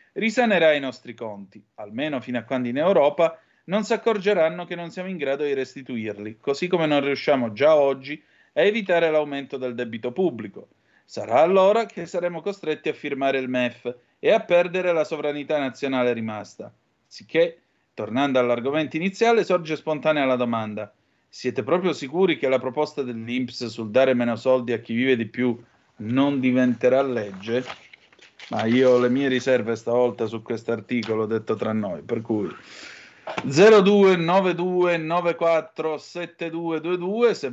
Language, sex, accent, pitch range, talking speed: Italian, male, native, 120-165 Hz, 150 wpm